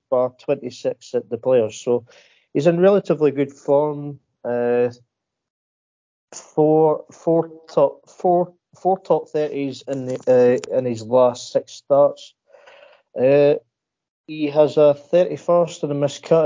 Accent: British